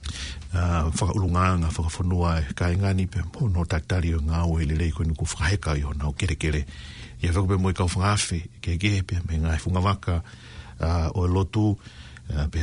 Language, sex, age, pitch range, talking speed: English, male, 60-79, 80-100 Hz, 195 wpm